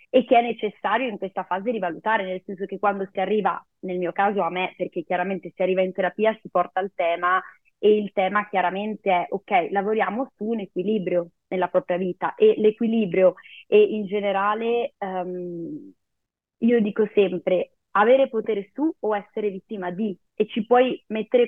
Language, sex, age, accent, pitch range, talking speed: Italian, female, 20-39, native, 185-220 Hz, 170 wpm